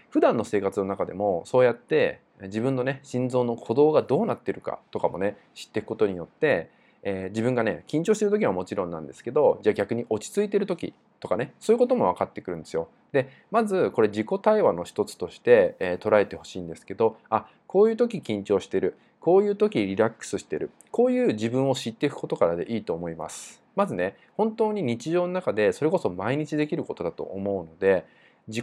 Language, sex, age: Japanese, male, 20-39